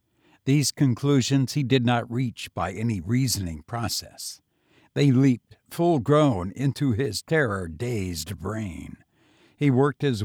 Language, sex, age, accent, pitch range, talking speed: English, male, 60-79, American, 105-140 Hz, 115 wpm